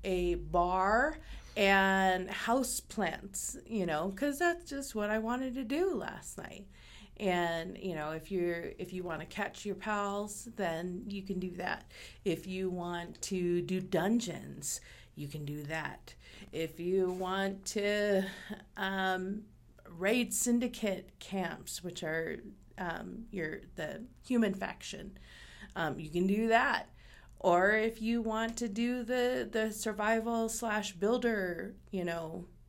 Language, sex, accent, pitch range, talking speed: English, female, American, 180-225 Hz, 140 wpm